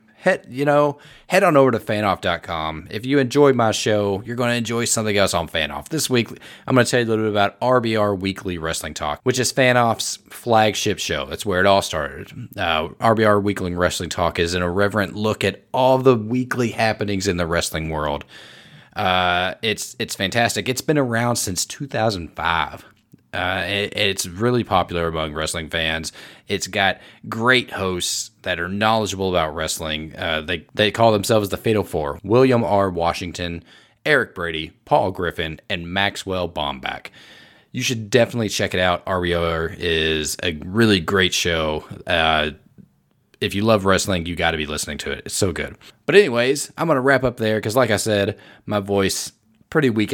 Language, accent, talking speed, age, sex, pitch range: English, American, 180 wpm, 30-49, male, 90-115 Hz